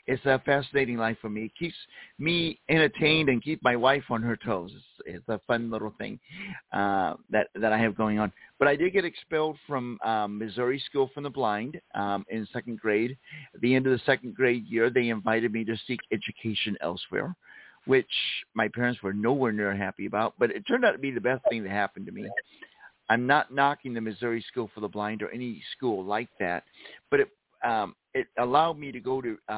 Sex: male